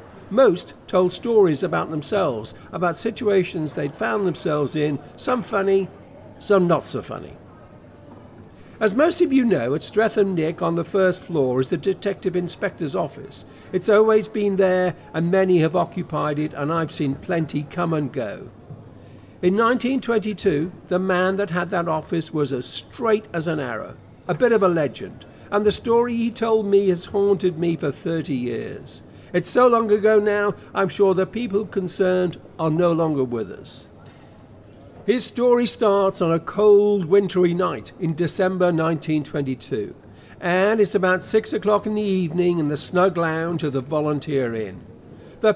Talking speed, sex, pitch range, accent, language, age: 165 wpm, male, 155-200 Hz, British, English, 50-69